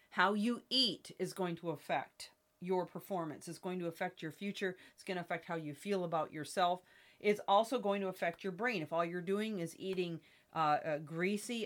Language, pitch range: English, 175-205 Hz